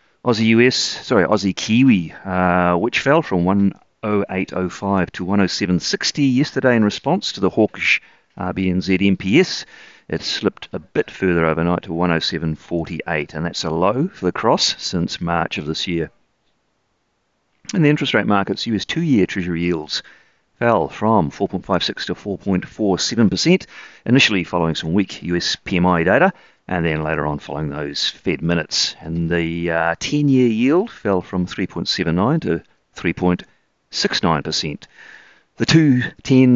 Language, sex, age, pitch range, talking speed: English, male, 40-59, 85-105 Hz, 125 wpm